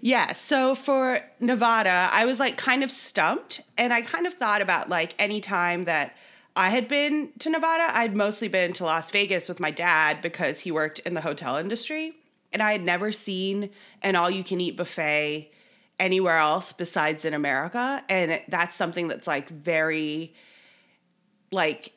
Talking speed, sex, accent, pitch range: 175 wpm, female, American, 165-230 Hz